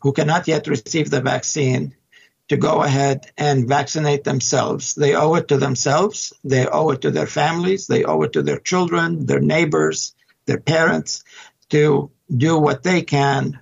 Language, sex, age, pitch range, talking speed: English, male, 60-79, 135-160 Hz, 165 wpm